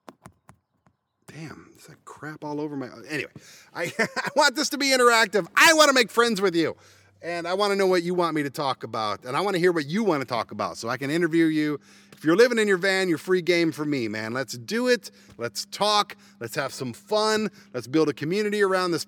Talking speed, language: 245 wpm, English